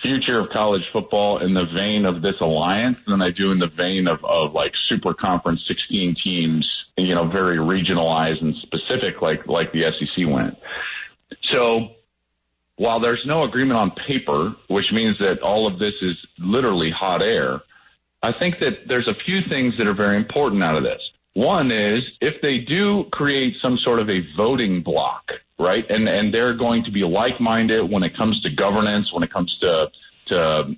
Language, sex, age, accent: English, male, 40-59, American